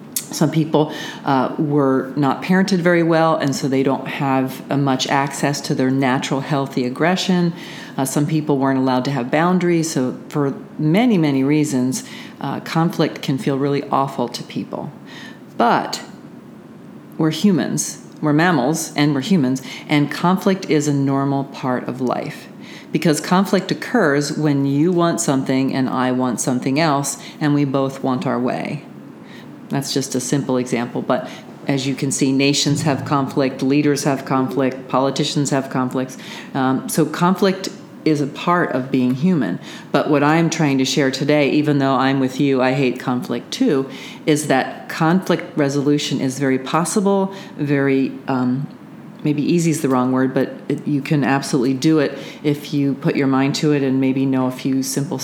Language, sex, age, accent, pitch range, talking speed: English, female, 40-59, American, 135-160 Hz, 165 wpm